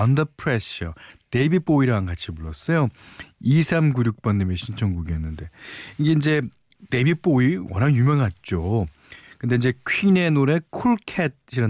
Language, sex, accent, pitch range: Korean, male, native, 100-150 Hz